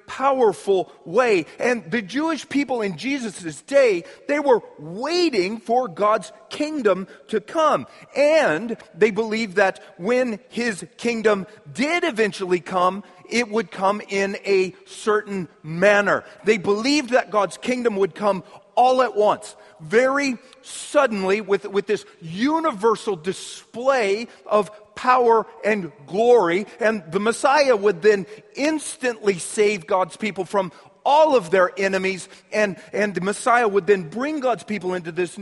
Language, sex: English, male